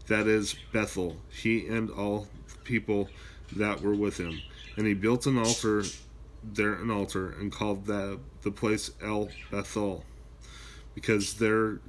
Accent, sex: American, male